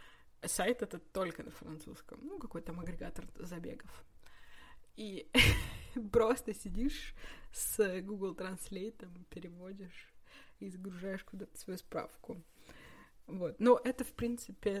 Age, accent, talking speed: 20-39, native, 110 wpm